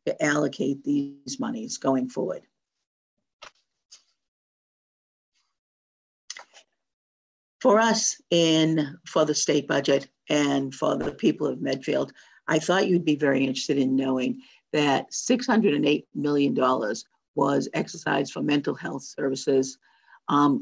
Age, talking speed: 50-69, 110 wpm